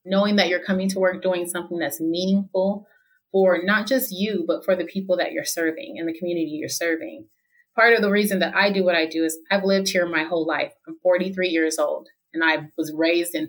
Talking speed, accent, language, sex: 230 wpm, American, English, female